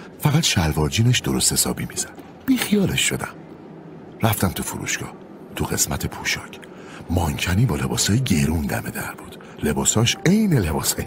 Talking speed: 125 wpm